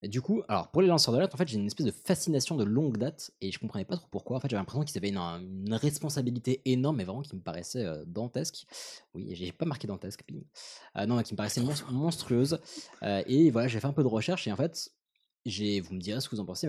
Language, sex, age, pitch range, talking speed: French, male, 20-39, 105-145 Hz, 275 wpm